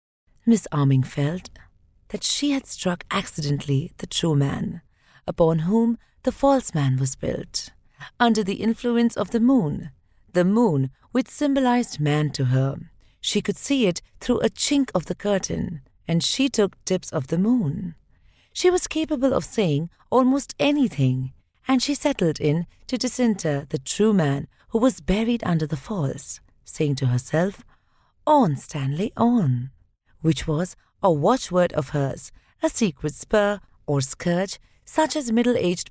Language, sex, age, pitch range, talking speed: Hindi, female, 40-59, 150-240 Hz, 150 wpm